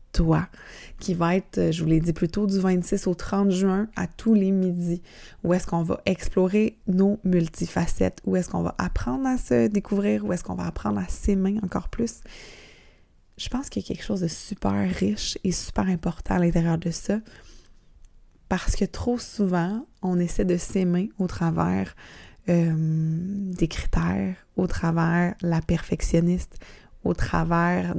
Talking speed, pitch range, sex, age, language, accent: 165 wpm, 165-195 Hz, female, 20-39, French, Canadian